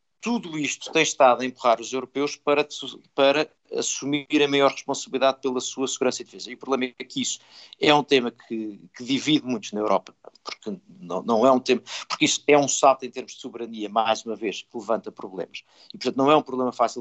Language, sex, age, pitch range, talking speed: Portuguese, male, 50-69, 125-155 Hz, 220 wpm